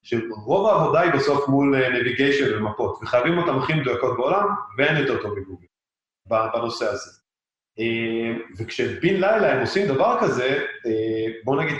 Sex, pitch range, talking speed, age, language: male, 115-150 Hz, 130 wpm, 30-49, Hebrew